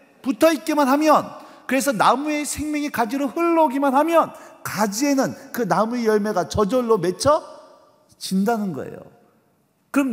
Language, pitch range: Korean, 215-275 Hz